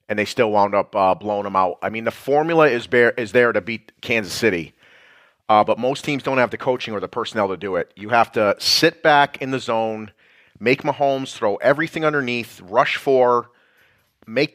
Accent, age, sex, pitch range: American, 30-49, male, 105-130 Hz